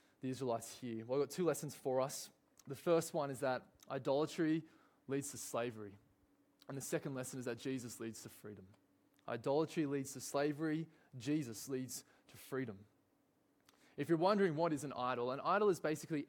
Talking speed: 175 wpm